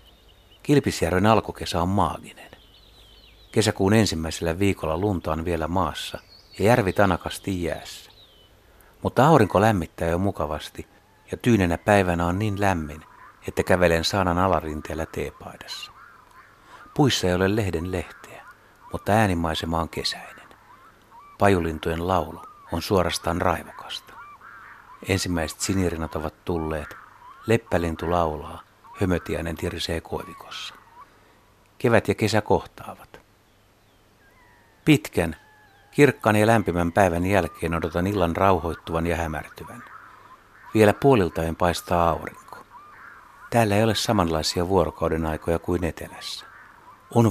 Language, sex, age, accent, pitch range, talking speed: Finnish, male, 60-79, native, 85-105 Hz, 105 wpm